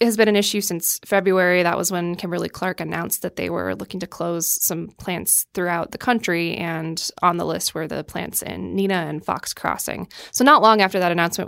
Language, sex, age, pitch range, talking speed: English, female, 20-39, 165-200 Hz, 210 wpm